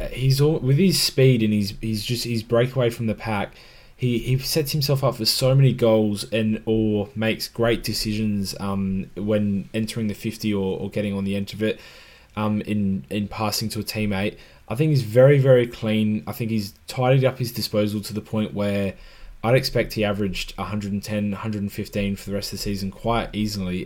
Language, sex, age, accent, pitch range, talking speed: English, male, 10-29, Australian, 100-120 Hz, 200 wpm